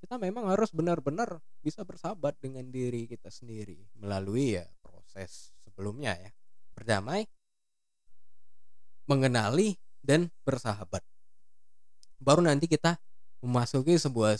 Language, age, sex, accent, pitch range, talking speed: Indonesian, 20-39, male, native, 95-140 Hz, 100 wpm